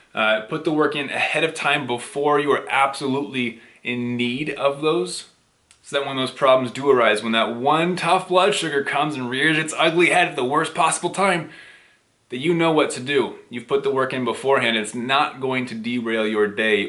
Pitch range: 120-160 Hz